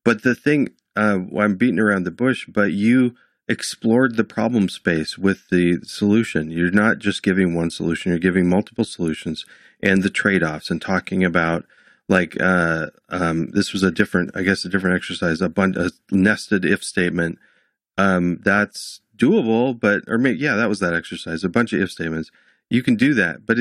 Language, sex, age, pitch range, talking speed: English, male, 40-59, 85-105 Hz, 185 wpm